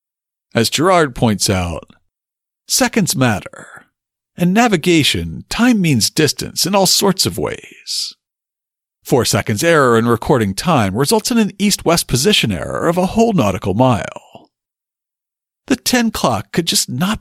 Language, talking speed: English, 135 wpm